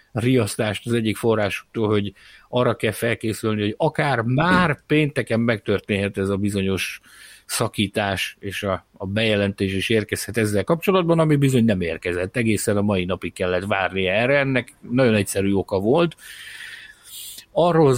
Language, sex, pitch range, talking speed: Hungarian, male, 100-140 Hz, 140 wpm